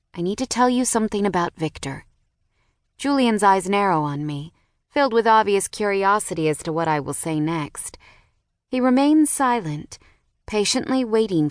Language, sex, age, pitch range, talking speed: English, female, 30-49, 145-195 Hz, 150 wpm